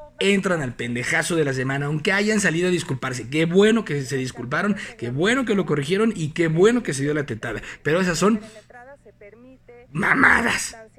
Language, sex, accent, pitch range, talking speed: Spanish, male, Mexican, 150-210 Hz, 180 wpm